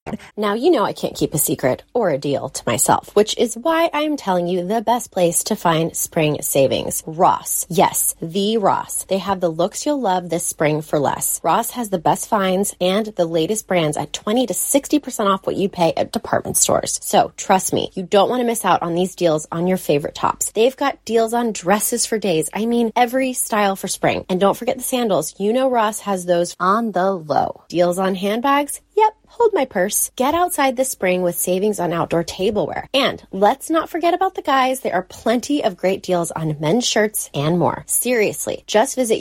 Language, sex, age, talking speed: English, female, 20-39, 215 wpm